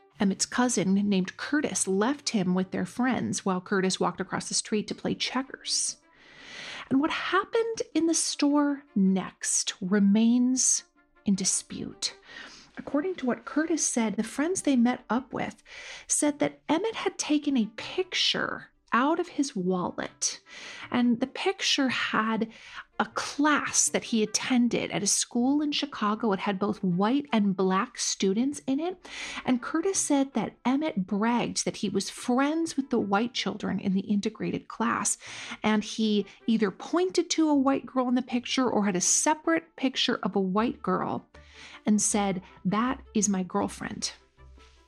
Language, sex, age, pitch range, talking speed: English, female, 40-59, 200-285 Hz, 155 wpm